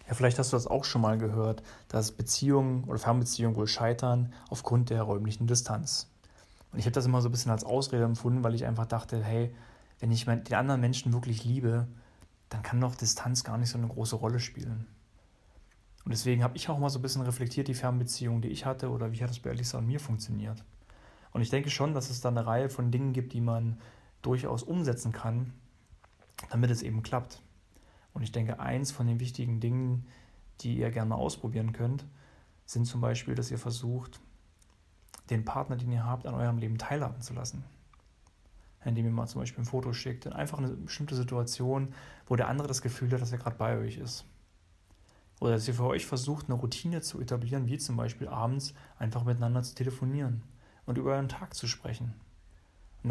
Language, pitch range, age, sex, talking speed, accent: German, 110-125 Hz, 40-59, male, 200 wpm, German